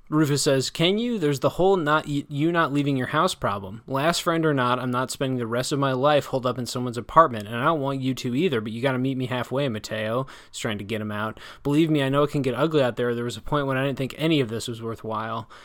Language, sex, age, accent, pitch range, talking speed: English, male, 20-39, American, 120-150 Hz, 290 wpm